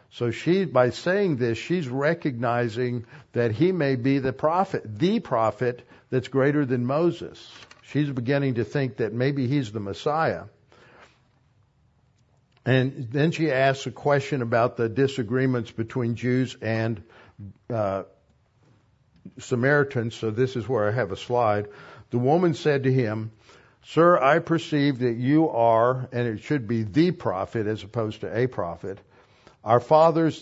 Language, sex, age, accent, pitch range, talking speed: English, male, 60-79, American, 115-145 Hz, 145 wpm